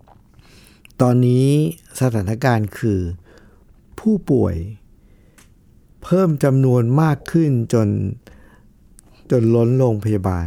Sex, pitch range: male, 105-140 Hz